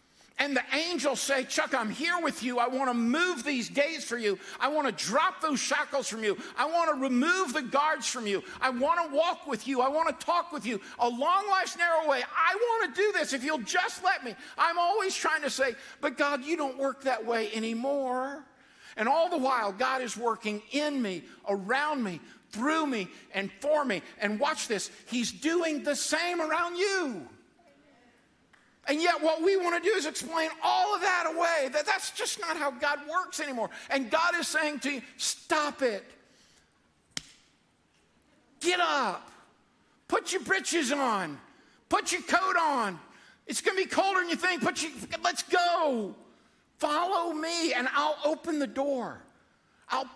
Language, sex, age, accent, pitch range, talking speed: English, male, 50-69, American, 255-335 Hz, 185 wpm